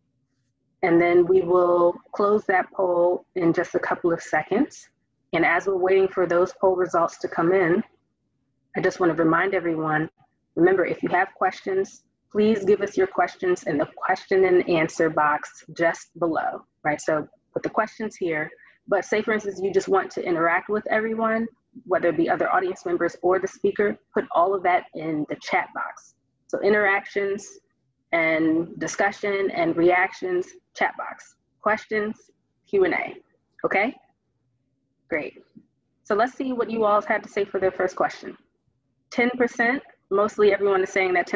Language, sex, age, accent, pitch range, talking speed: English, female, 30-49, American, 160-215 Hz, 165 wpm